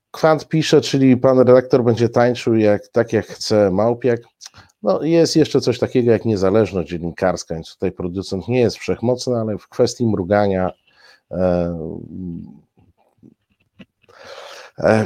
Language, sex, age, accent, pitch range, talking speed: Polish, male, 50-69, native, 80-105 Hz, 125 wpm